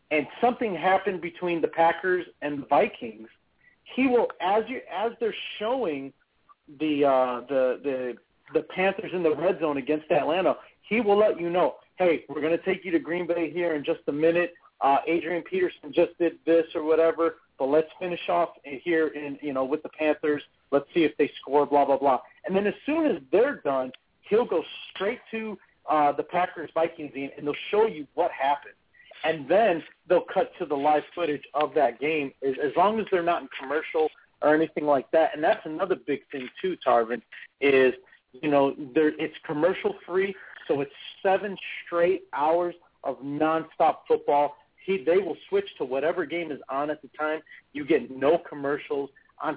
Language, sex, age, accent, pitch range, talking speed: English, male, 40-59, American, 145-185 Hz, 185 wpm